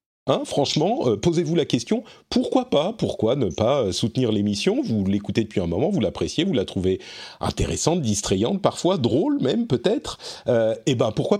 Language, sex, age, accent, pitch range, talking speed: French, male, 40-59, French, 110-170 Hz, 175 wpm